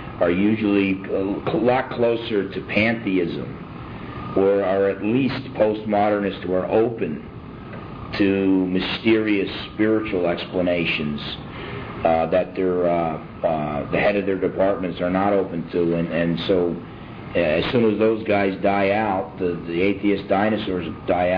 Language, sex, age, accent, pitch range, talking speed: English, male, 50-69, American, 90-105 Hz, 135 wpm